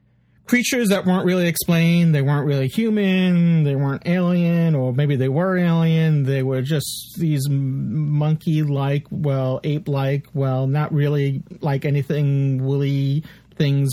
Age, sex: 40-59, male